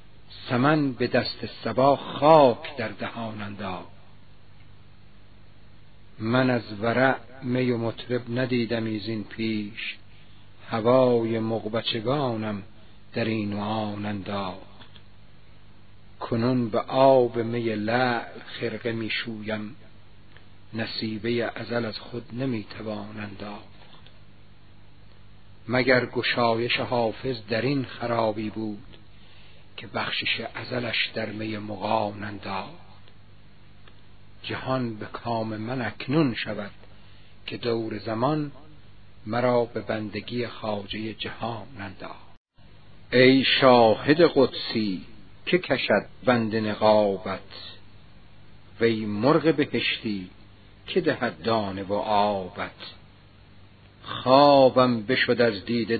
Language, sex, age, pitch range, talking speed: Persian, male, 50-69, 100-120 Hz, 90 wpm